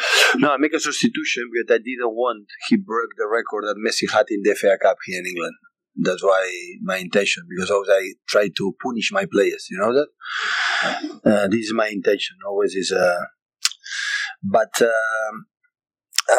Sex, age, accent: male, 30-49, Spanish